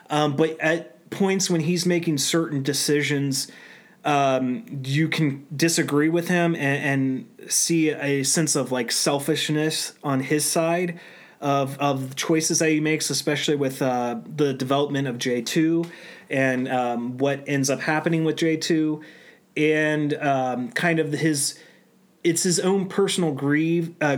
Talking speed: 150 wpm